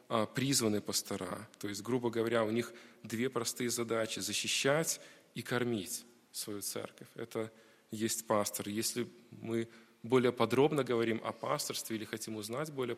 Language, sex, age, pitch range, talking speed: Russian, male, 20-39, 110-125 Hz, 145 wpm